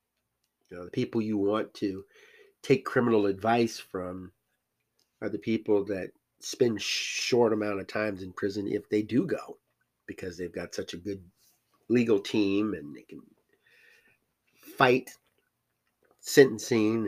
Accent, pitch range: American, 105-155 Hz